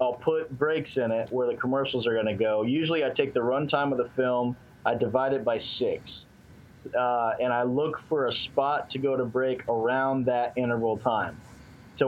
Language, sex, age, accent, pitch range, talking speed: English, male, 30-49, American, 120-135 Hz, 205 wpm